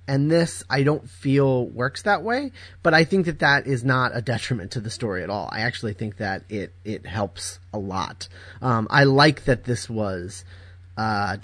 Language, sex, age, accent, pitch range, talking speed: English, male, 30-49, American, 95-140 Hz, 200 wpm